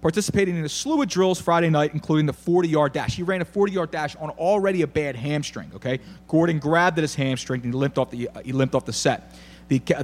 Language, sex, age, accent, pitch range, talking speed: English, male, 30-49, American, 120-175 Hz, 240 wpm